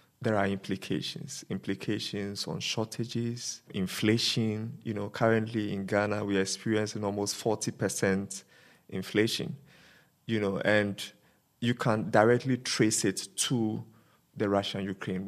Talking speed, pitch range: 115 wpm, 105-125 Hz